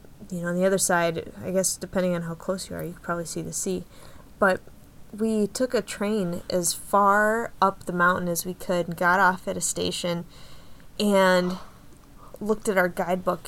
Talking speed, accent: 190 wpm, American